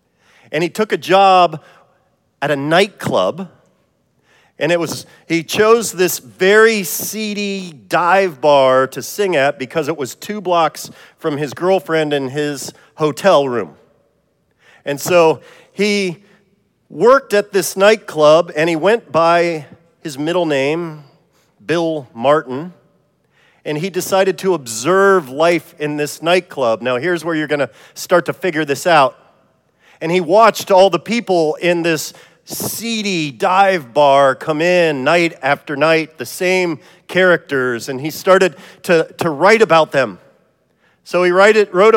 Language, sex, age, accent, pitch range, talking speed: English, male, 40-59, American, 150-190 Hz, 140 wpm